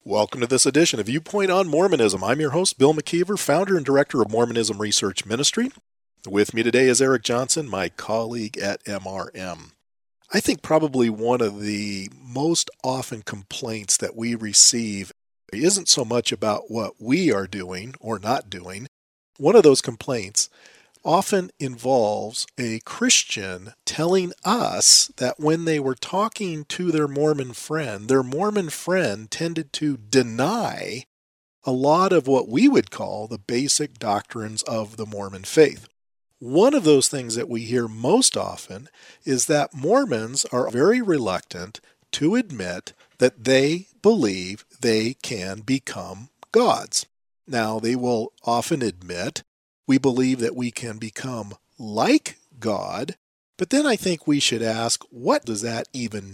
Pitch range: 110-155 Hz